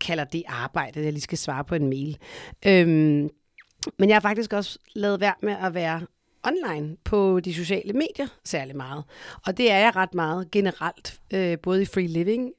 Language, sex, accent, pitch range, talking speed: Danish, female, native, 165-195 Hz, 195 wpm